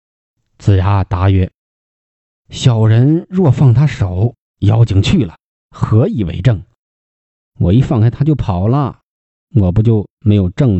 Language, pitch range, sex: Chinese, 90-115 Hz, male